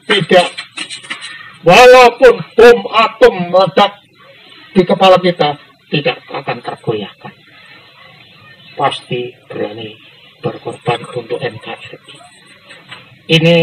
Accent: native